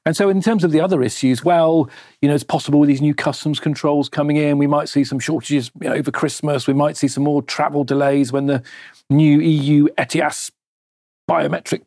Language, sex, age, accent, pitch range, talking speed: English, male, 40-59, British, 130-155 Hz, 200 wpm